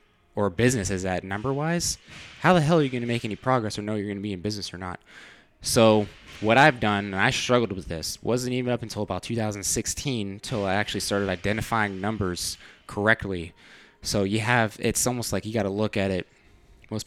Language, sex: English, male